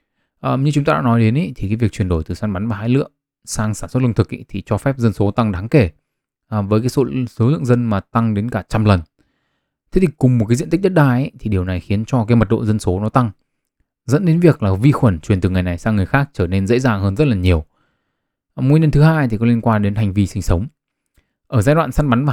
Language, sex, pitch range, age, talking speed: Vietnamese, male, 100-130 Hz, 20-39, 295 wpm